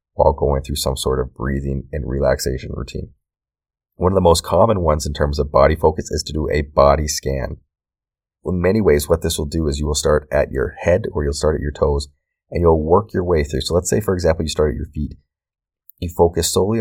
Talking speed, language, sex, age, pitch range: 235 wpm, English, male, 30-49, 70-80 Hz